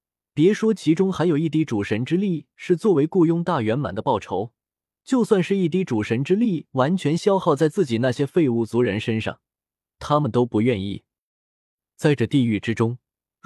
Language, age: Chinese, 20-39